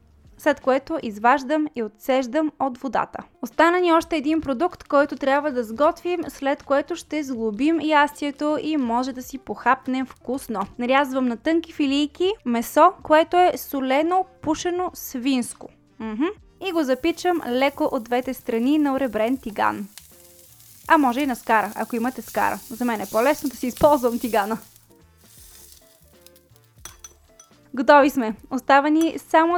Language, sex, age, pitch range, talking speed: Bulgarian, female, 20-39, 240-305 Hz, 140 wpm